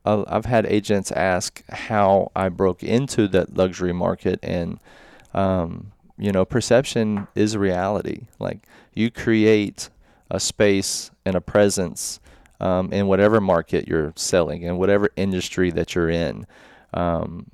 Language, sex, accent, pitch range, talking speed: English, male, American, 90-105 Hz, 135 wpm